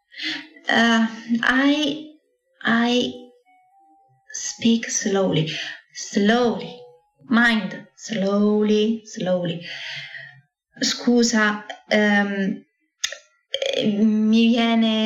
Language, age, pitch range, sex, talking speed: Italian, 20-39, 205-260 Hz, female, 45 wpm